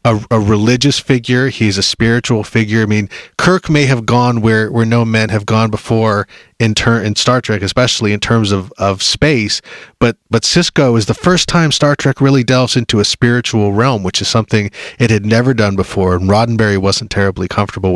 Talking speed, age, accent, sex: 200 wpm, 30-49, American, male